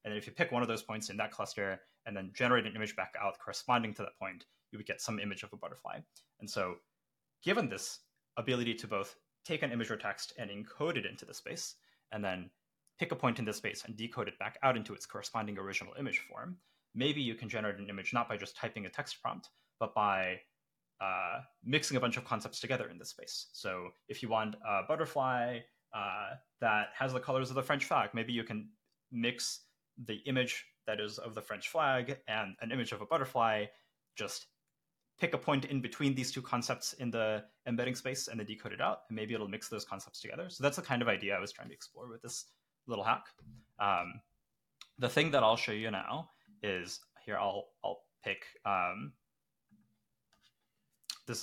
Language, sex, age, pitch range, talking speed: English, male, 20-39, 105-130 Hz, 210 wpm